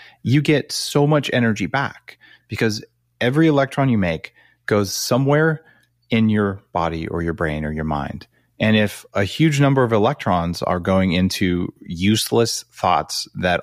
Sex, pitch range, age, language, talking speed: male, 90-120 Hz, 30-49, English, 155 wpm